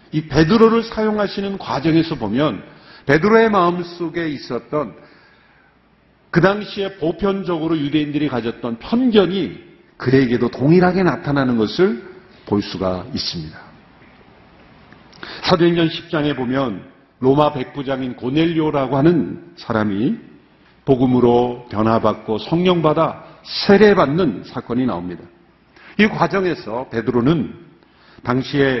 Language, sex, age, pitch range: Korean, male, 50-69, 120-185 Hz